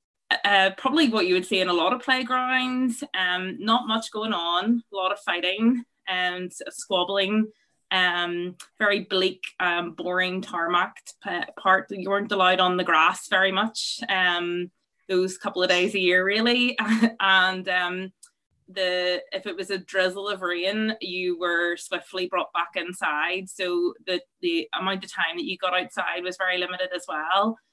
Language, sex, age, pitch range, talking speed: English, female, 20-39, 180-220 Hz, 165 wpm